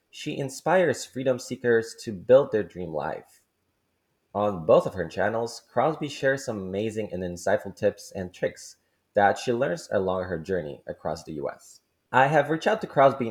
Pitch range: 100-135 Hz